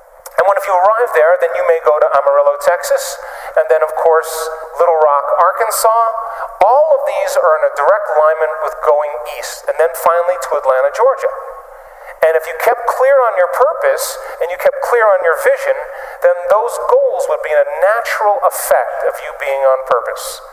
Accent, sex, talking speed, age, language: American, male, 190 wpm, 40-59, English